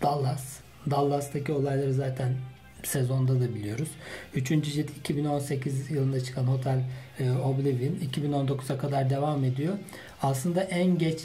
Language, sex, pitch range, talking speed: Turkish, male, 130-160 Hz, 110 wpm